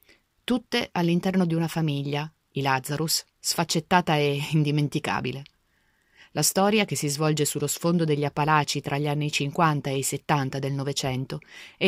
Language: Italian